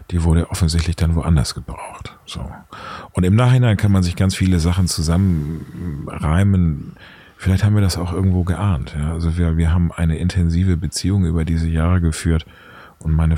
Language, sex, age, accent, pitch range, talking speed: German, male, 40-59, German, 80-100 Hz, 160 wpm